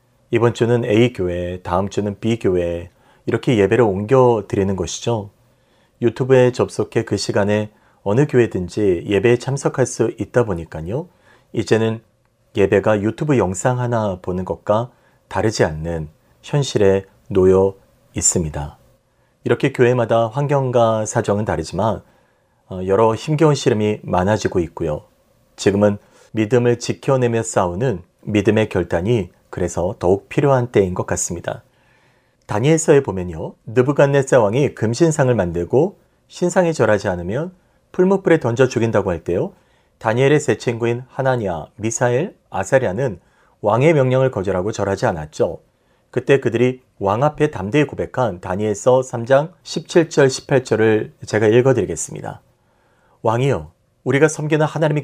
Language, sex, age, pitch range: Korean, male, 40-59, 100-135 Hz